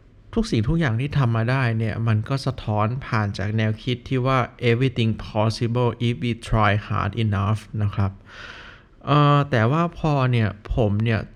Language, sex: Thai, male